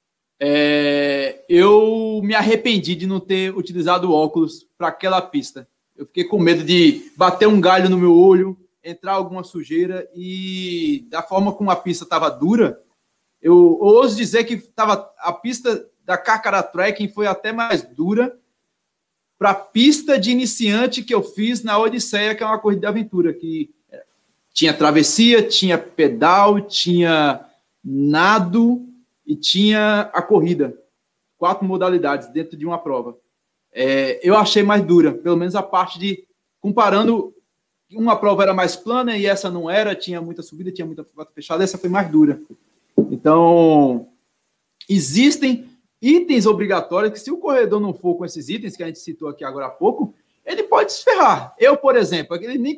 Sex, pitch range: male, 170-230 Hz